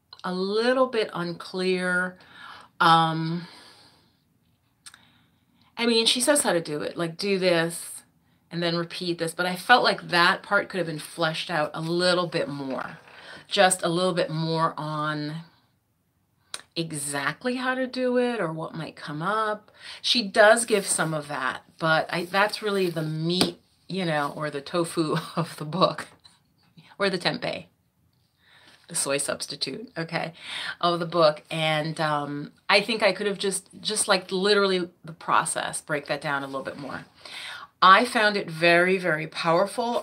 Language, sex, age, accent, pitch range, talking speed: English, female, 30-49, American, 155-190 Hz, 155 wpm